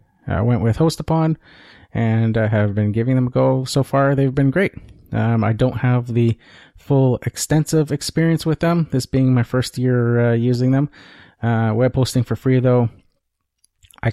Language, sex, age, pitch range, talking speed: English, male, 30-49, 100-125 Hz, 180 wpm